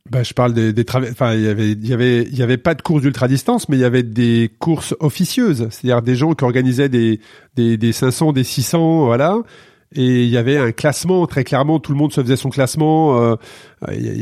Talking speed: 230 wpm